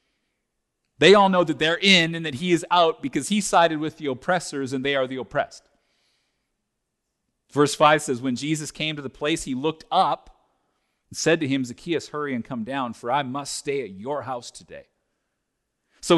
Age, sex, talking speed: 40-59, male, 195 wpm